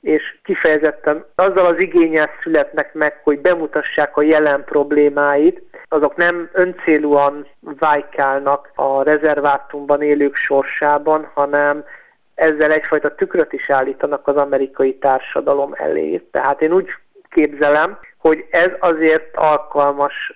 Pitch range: 145-165 Hz